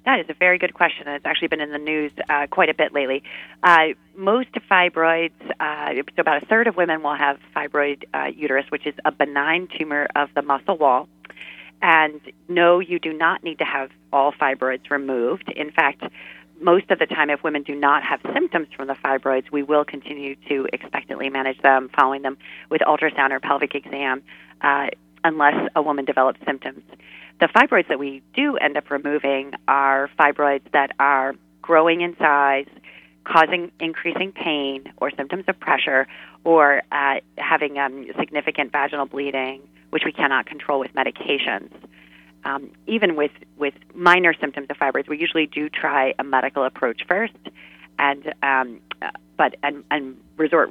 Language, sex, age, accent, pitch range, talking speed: English, female, 40-59, American, 135-160 Hz, 165 wpm